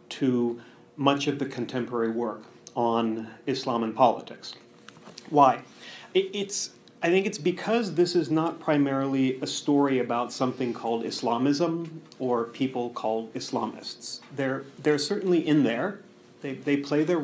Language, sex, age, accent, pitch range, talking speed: English, male, 40-59, American, 125-165 Hz, 135 wpm